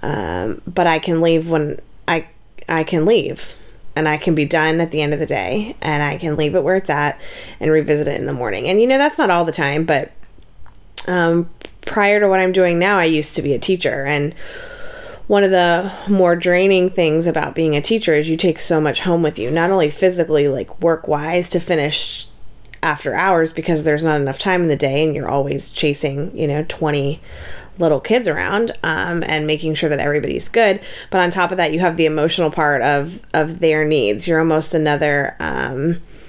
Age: 20-39